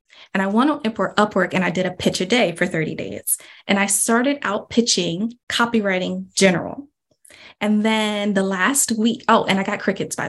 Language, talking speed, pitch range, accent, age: English, 200 wpm, 190-225 Hz, American, 20-39